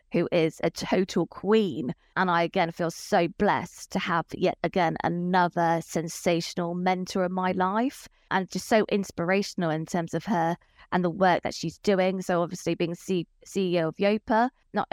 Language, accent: English, British